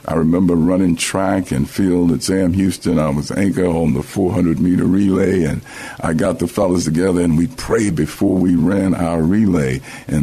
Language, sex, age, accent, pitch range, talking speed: English, male, 60-79, American, 85-105 Hz, 190 wpm